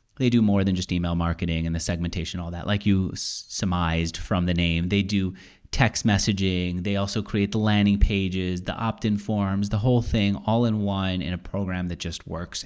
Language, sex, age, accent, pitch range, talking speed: English, male, 30-49, American, 90-110 Hz, 205 wpm